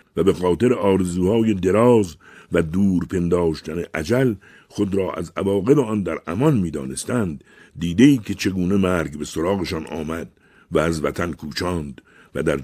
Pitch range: 80-105 Hz